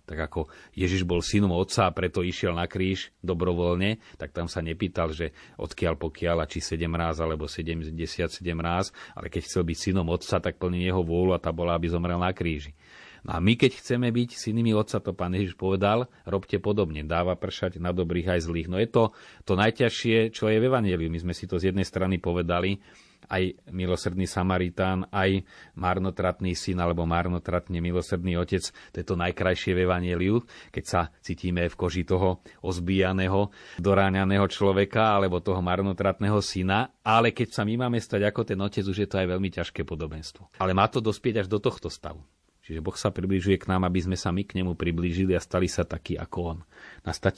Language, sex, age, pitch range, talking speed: Slovak, male, 30-49, 85-100 Hz, 195 wpm